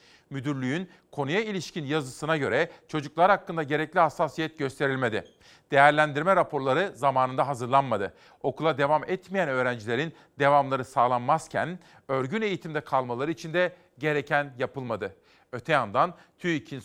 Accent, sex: native, male